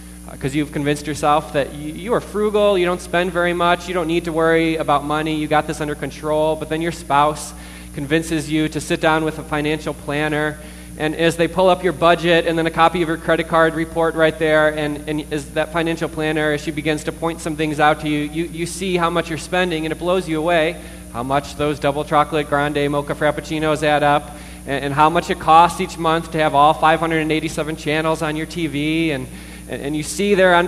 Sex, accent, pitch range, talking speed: male, American, 145-170 Hz, 225 wpm